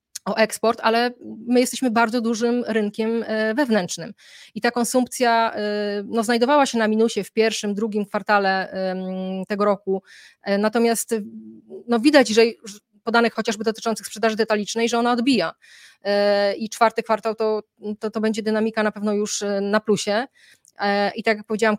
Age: 20-39